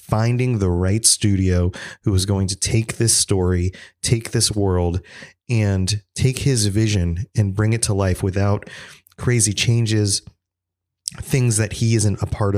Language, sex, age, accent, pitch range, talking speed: English, male, 30-49, American, 90-110 Hz, 155 wpm